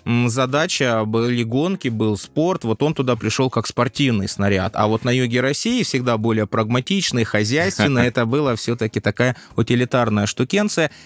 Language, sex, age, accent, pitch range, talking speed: Russian, male, 20-39, native, 110-145 Hz, 145 wpm